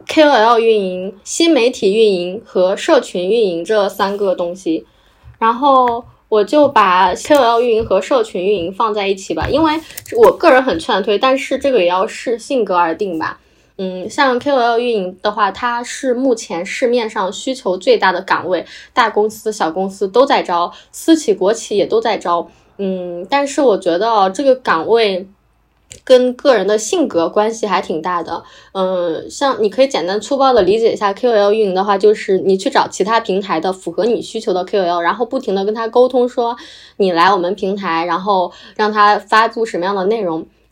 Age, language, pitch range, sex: 10-29, Chinese, 190-255 Hz, female